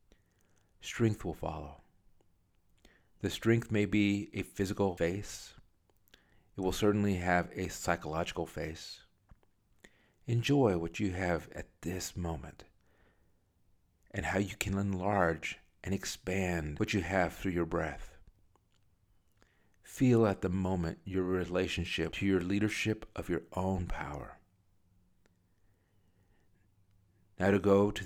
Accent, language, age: American, English, 50-69